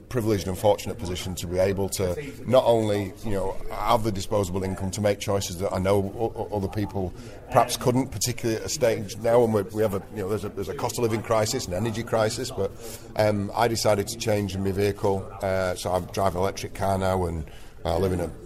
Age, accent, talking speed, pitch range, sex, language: 40-59, British, 230 wpm, 95-110 Hz, male, English